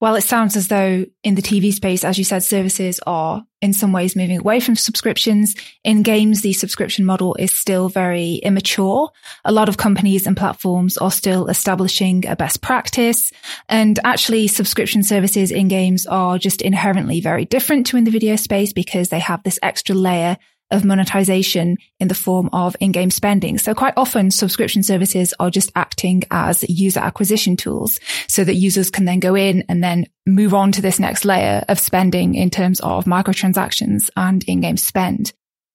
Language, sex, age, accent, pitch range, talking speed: English, female, 20-39, British, 185-220 Hz, 180 wpm